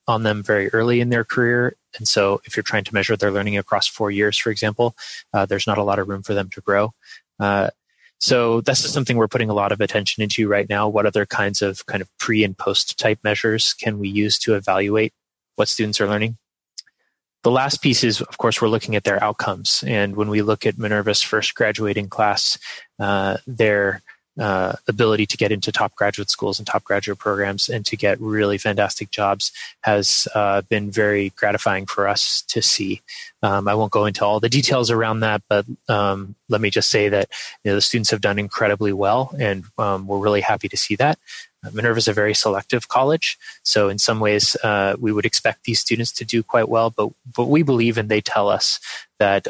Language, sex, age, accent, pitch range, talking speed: English, male, 20-39, American, 100-110 Hz, 210 wpm